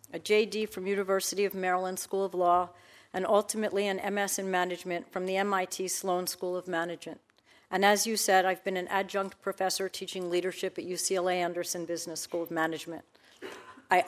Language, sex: English, female